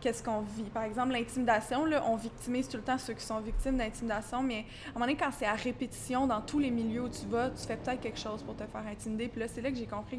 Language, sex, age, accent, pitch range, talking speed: English, female, 20-39, Canadian, 230-275 Hz, 290 wpm